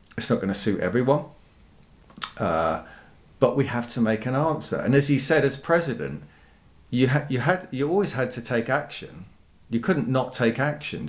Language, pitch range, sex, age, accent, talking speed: English, 100-135 Hz, male, 40-59, British, 185 wpm